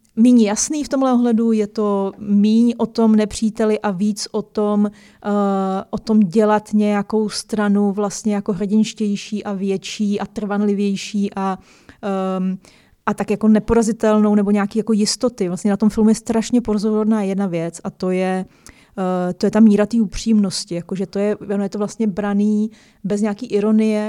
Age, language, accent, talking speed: 20-39, Czech, native, 165 wpm